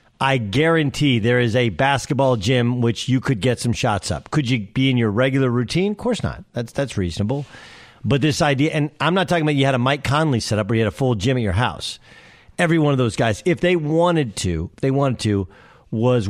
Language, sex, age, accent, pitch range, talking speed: English, male, 50-69, American, 115-155 Hz, 240 wpm